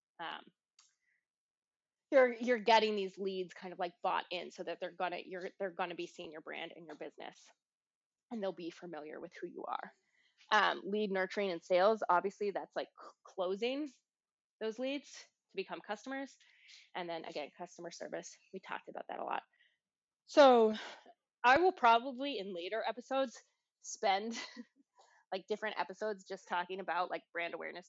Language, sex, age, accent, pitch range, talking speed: English, female, 20-39, American, 175-235 Hz, 165 wpm